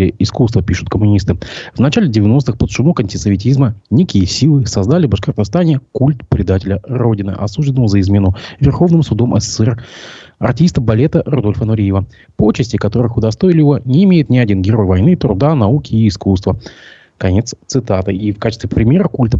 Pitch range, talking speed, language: 95-130 Hz, 145 wpm, Russian